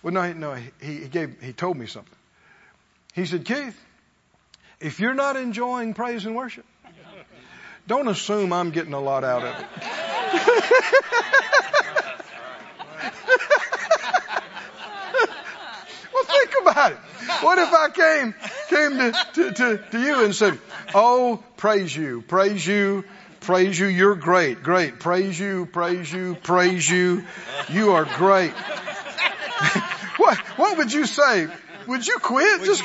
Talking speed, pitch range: 130 wpm, 185-310 Hz